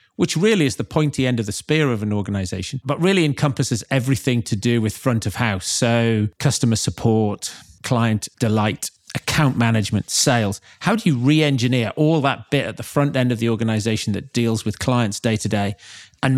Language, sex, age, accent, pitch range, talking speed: English, male, 40-59, British, 105-135 Hz, 190 wpm